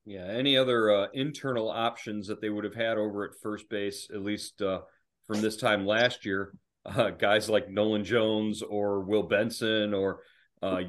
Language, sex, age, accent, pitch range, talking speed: English, male, 40-59, American, 105-125 Hz, 180 wpm